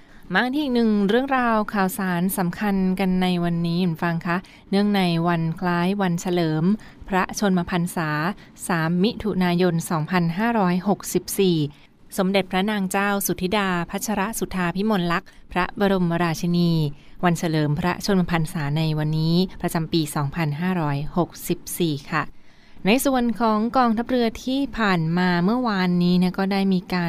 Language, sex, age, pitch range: Thai, female, 20-39, 170-200 Hz